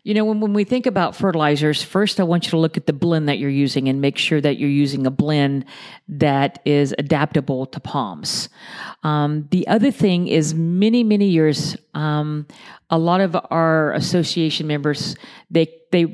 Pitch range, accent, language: 150-185 Hz, American, English